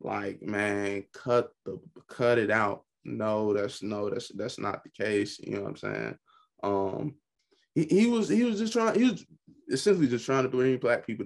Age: 20-39